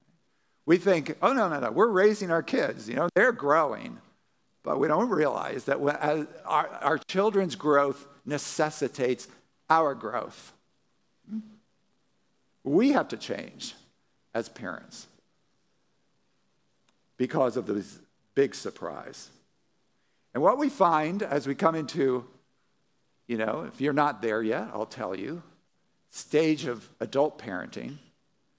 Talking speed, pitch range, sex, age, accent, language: 125 wpm, 140-205 Hz, male, 50-69, American, English